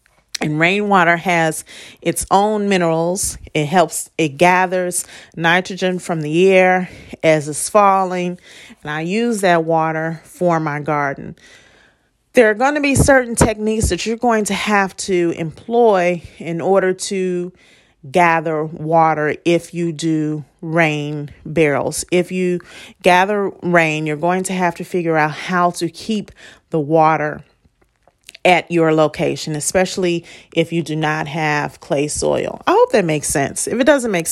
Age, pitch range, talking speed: 40-59, 160-190 Hz, 150 wpm